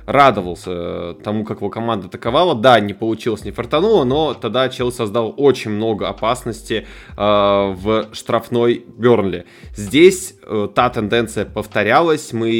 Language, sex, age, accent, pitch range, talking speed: Russian, male, 20-39, native, 105-125 Hz, 135 wpm